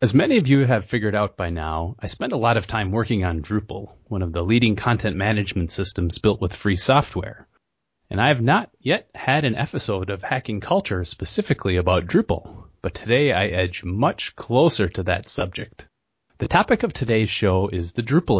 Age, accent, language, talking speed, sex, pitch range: 30-49, American, English, 195 wpm, male, 90-120 Hz